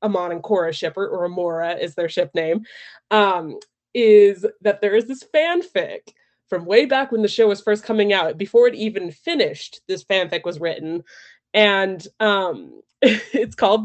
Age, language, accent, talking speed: 20-39, English, American, 170 wpm